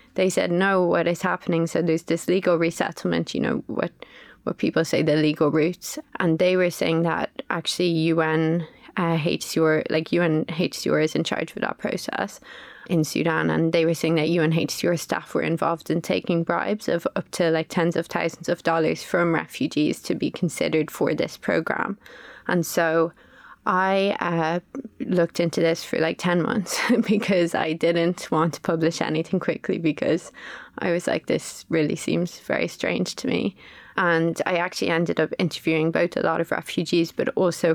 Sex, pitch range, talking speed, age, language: female, 165-180 Hz, 175 wpm, 20-39, English